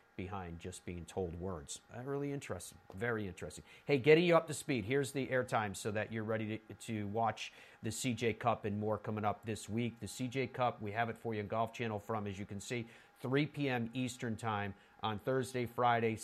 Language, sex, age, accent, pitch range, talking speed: English, male, 40-59, American, 105-130 Hz, 215 wpm